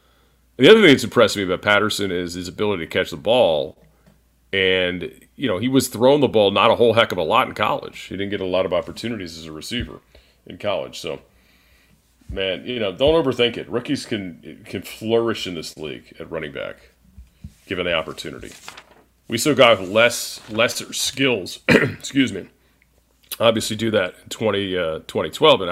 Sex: male